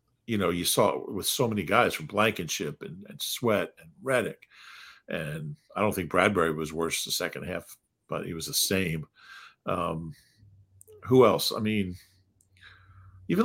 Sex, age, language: male, 50-69, English